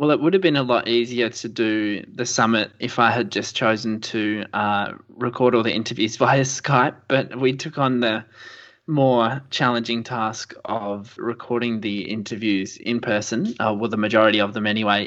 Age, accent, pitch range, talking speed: 20-39, Australian, 105-125 Hz, 185 wpm